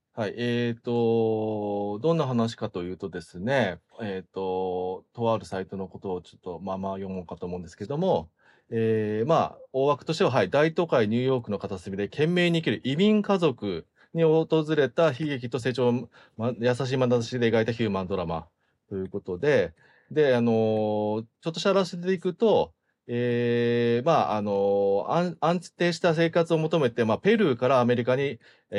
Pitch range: 100-145 Hz